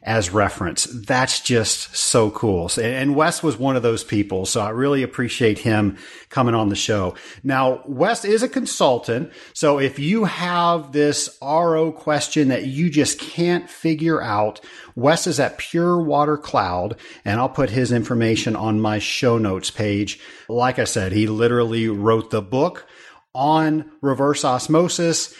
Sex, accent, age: male, American, 40-59